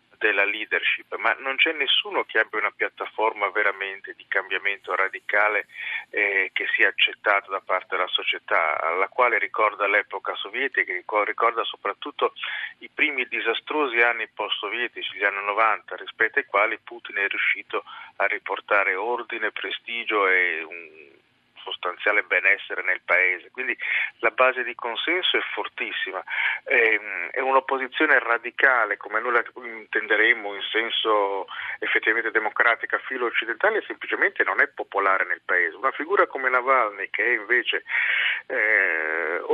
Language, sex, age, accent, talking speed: Italian, male, 40-59, native, 130 wpm